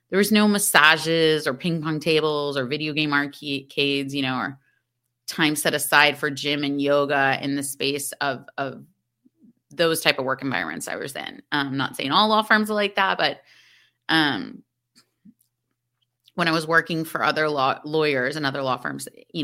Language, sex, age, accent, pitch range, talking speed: English, female, 30-49, American, 140-170 Hz, 180 wpm